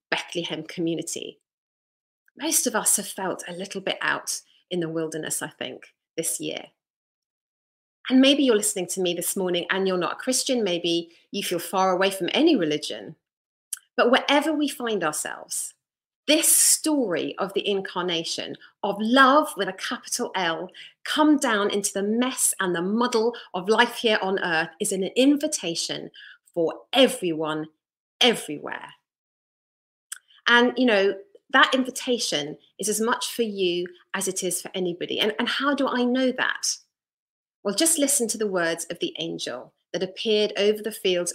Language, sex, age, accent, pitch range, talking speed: English, female, 40-59, British, 175-245 Hz, 160 wpm